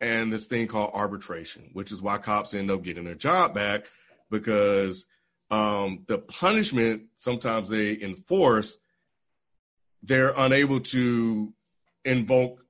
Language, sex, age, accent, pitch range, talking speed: English, male, 40-59, American, 100-120 Hz, 125 wpm